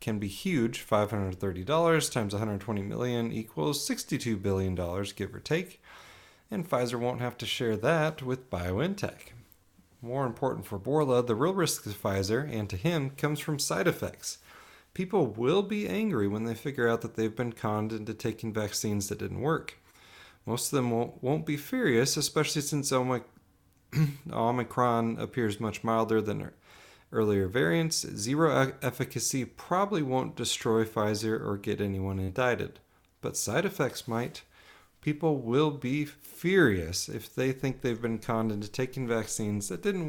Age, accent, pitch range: 30-49, American, 105-150 Hz